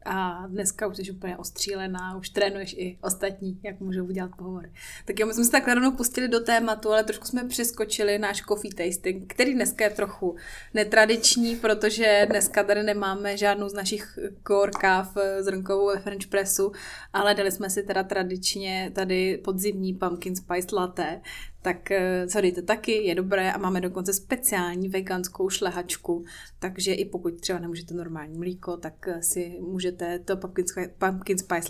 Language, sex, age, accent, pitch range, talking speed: Czech, female, 20-39, native, 185-215 Hz, 155 wpm